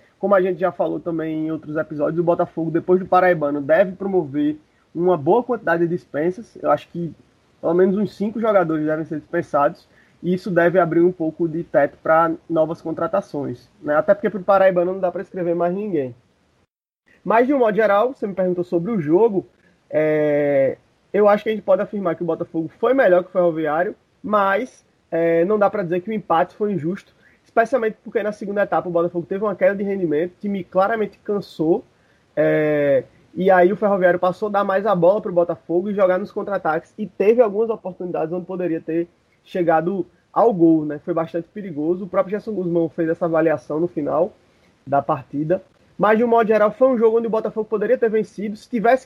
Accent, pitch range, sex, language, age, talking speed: Brazilian, 165-205 Hz, male, Portuguese, 20-39, 205 wpm